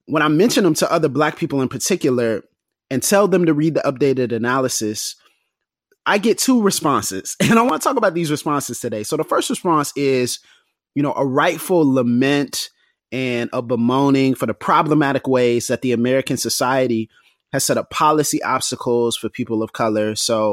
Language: English